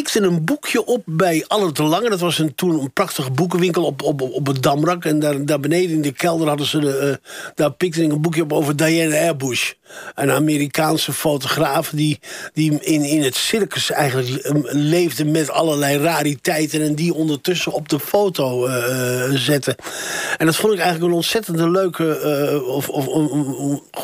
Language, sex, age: Dutch, male, 50-69